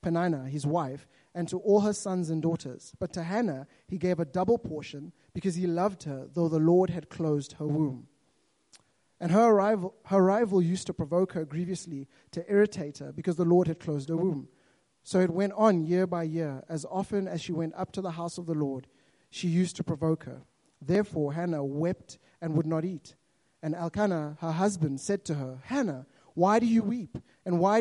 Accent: South African